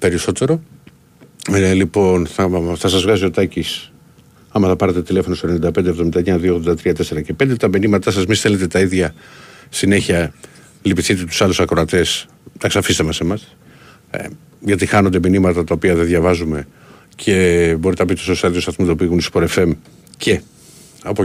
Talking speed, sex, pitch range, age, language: 160 wpm, male, 90-115 Hz, 50-69, Greek